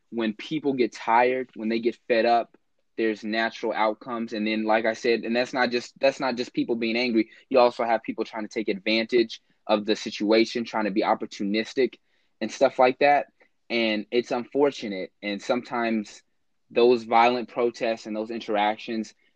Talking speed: 175 wpm